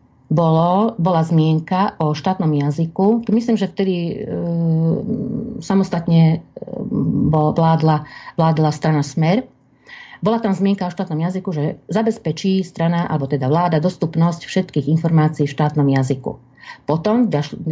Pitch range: 150-180 Hz